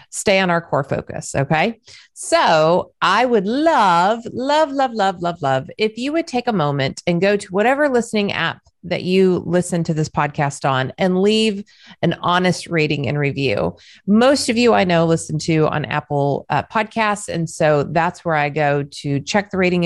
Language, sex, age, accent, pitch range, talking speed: English, female, 30-49, American, 155-205 Hz, 185 wpm